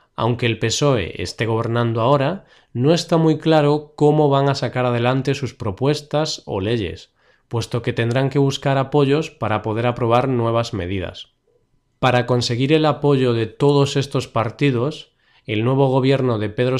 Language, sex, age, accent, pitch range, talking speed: Spanish, male, 20-39, Spanish, 115-145 Hz, 155 wpm